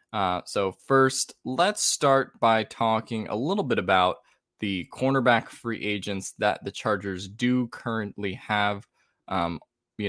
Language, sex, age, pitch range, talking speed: English, male, 20-39, 100-120 Hz, 135 wpm